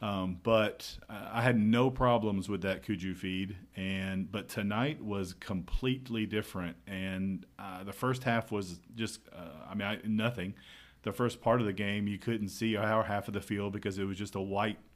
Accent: American